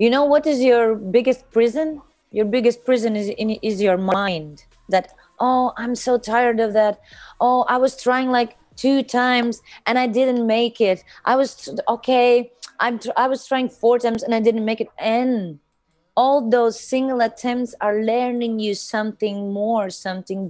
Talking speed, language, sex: 170 wpm, English, female